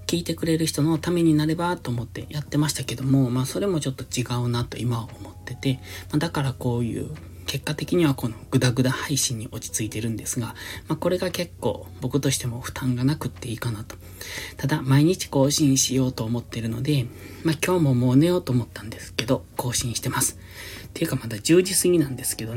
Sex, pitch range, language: male, 115-145 Hz, Japanese